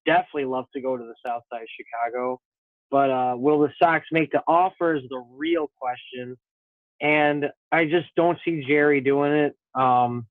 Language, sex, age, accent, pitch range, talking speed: English, male, 20-39, American, 130-160 Hz, 180 wpm